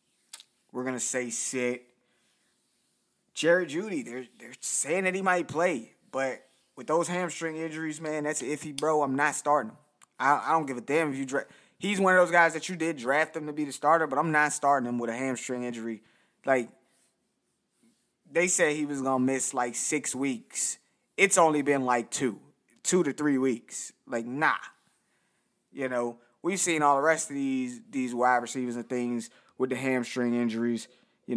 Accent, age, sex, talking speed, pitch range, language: American, 20-39, male, 195 wpm, 125-150 Hz, English